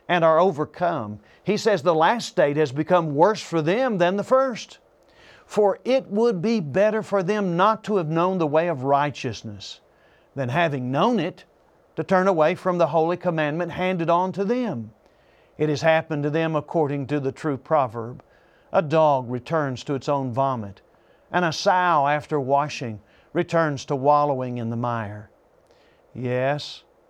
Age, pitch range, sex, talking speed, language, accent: 50-69, 135-175 Hz, male, 165 wpm, English, American